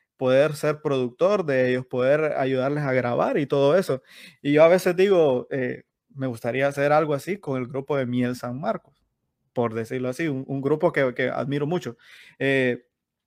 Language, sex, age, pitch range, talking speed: Spanish, male, 20-39, 130-160 Hz, 185 wpm